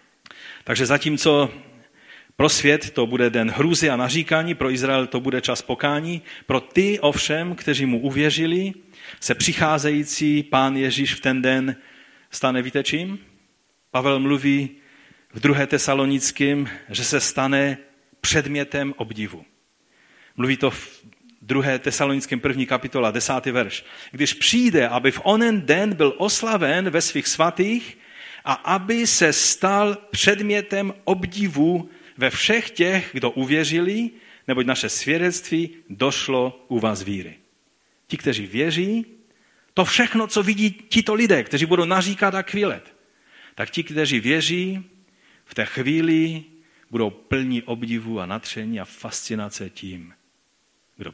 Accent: native